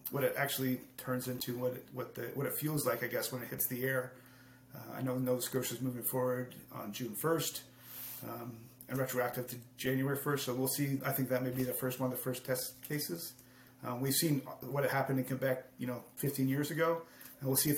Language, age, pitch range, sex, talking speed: English, 30-49, 125-145 Hz, male, 235 wpm